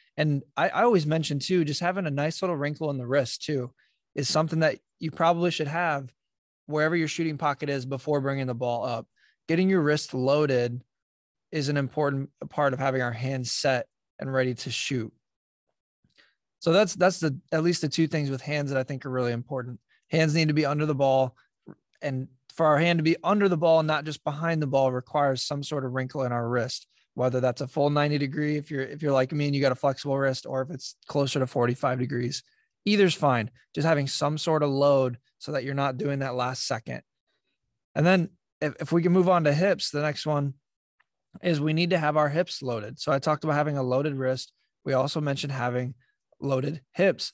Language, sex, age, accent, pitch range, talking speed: English, male, 20-39, American, 135-160 Hz, 220 wpm